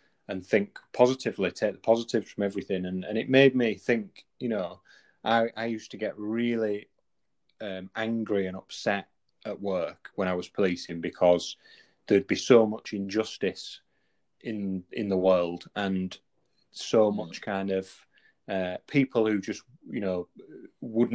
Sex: male